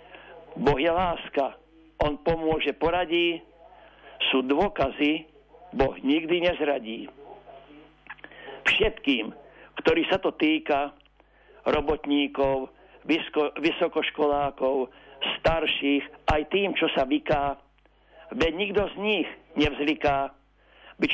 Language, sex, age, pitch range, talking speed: Slovak, male, 60-79, 145-170 Hz, 90 wpm